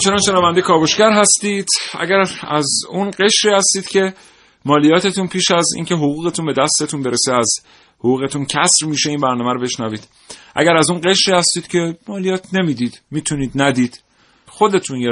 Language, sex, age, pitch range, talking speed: Persian, male, 40-59, 115-175 Hz, 155 wpm